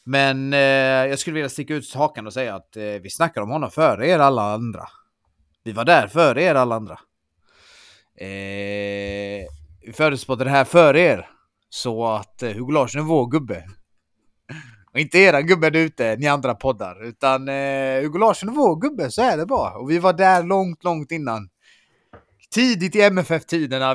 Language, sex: Swedish, male